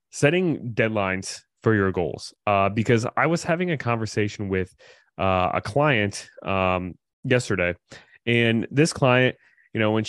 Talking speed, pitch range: 145 wpm, 95-115 Hz